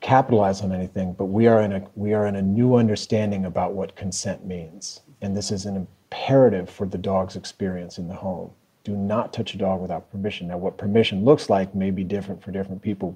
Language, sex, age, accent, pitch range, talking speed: English, male, 40-59, American, 95-105 Hz, 220 wpm